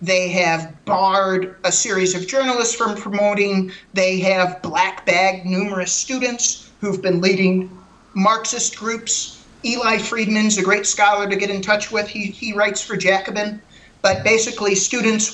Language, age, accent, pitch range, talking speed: English, 40-59, American, 185-215 Hz, 150 wpm